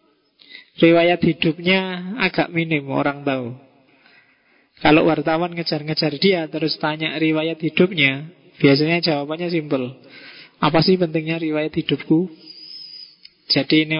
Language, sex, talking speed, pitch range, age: Indonesian, male, 105 wpm, 145-170 Hz, 20-39